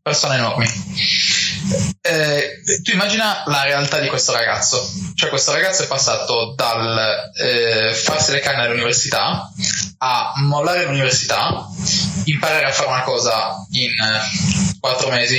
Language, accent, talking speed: Italian, native, 130 wpm